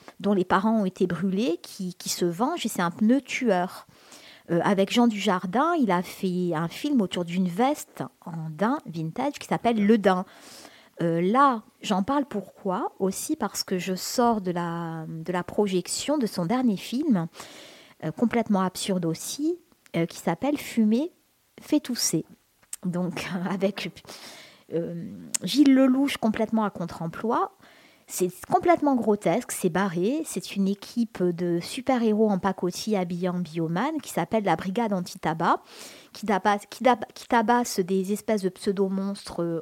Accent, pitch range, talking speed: French, 180-225 Hz, 150 wpm